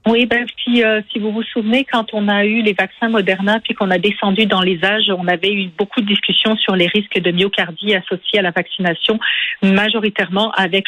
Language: French